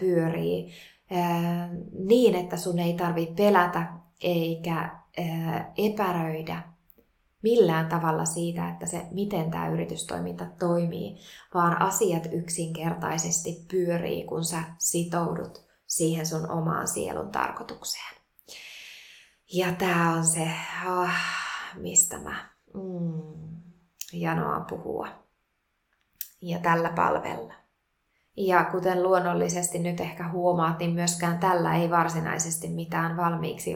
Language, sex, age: Finnish, female, 20-39